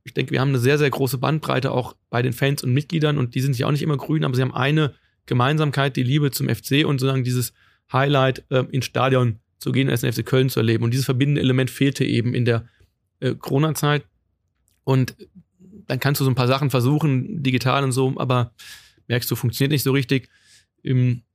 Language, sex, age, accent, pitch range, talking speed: German, male, 30-49, German, 120-135 Hz, 215 wpm